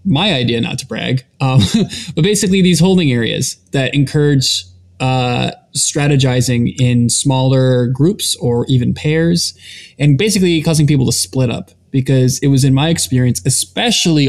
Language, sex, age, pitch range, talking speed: English, male, 20-39, 120-145 Hz, 145 wpm